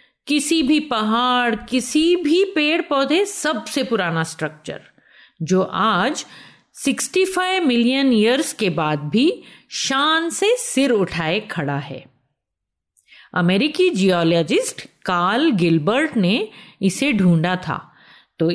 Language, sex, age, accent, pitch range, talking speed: Hindi, female, 50-69, native, 175-295 Hz, 105 wpm